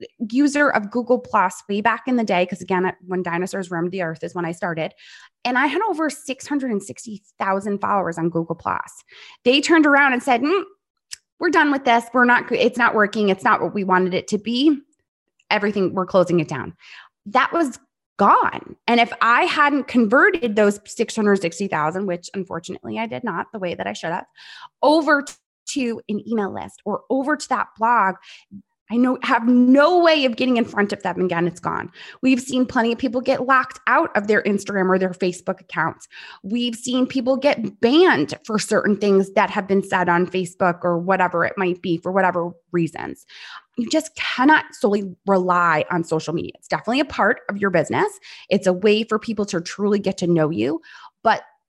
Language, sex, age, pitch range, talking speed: English, female, 20-39, 185-260 Hz, 195 wpm